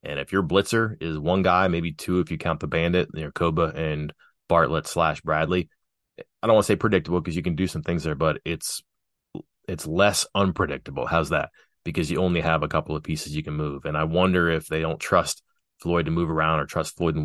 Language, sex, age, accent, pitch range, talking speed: English, male, 30-49, American, 80-95 Hz, 225 wpm